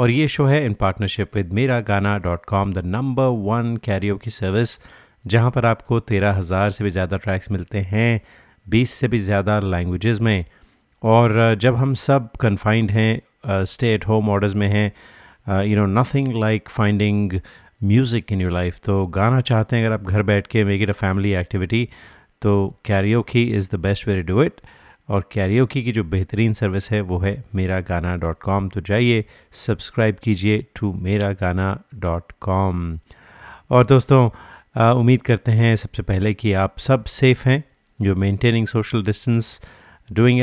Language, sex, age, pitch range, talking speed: Hindi, male, 30-49, 100-115 Hz, 170 wpm